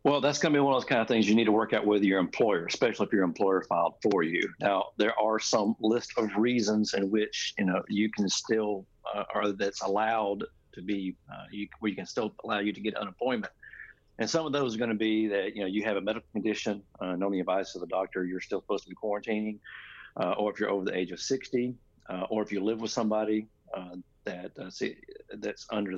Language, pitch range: English, 95-115 Hz